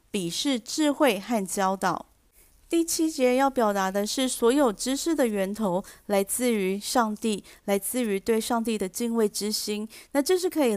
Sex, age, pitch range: female, 30-49, 195-260 Hz